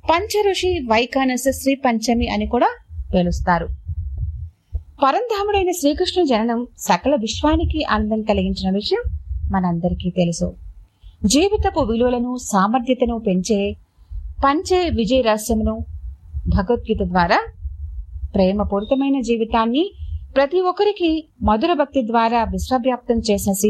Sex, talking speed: female, 85 wpm